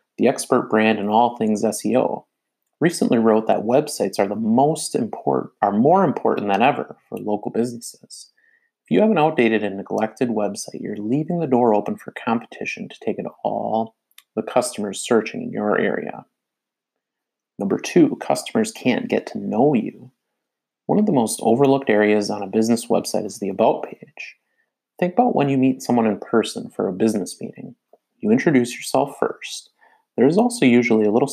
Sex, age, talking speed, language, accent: male, 30-49, 175 wpm, English, American